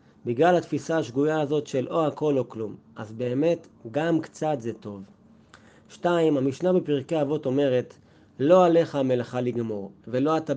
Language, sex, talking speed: Hebrew, male, 150 wpm